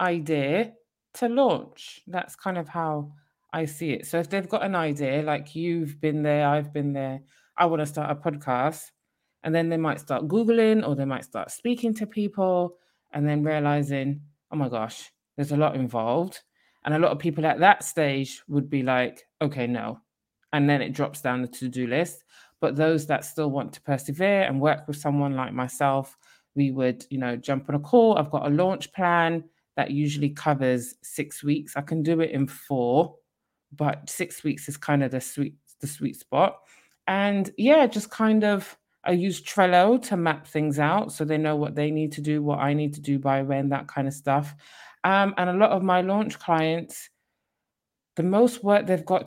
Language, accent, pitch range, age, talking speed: English, British, 140-180 Hz, 20-39, 200 wpm